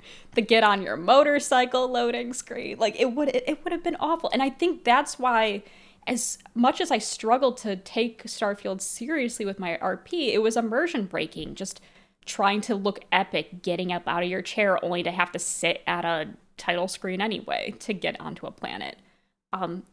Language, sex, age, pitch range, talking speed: English, female, 20-39, 180-230 Hz, 185 wpm